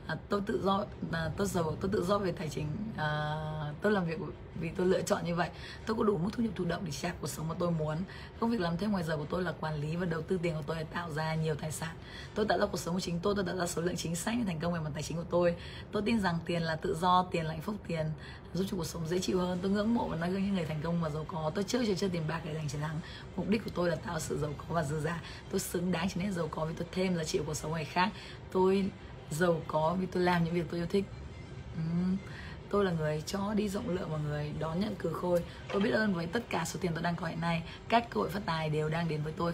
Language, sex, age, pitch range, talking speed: Vietnamese, female, 20-39, 160-185 Hz, 305 wpm